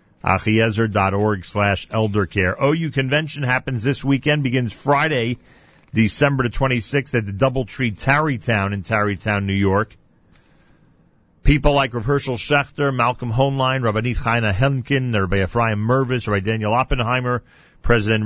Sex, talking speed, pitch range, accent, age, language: male, 120 wpm, 100-125 Hz, American, 40-59, English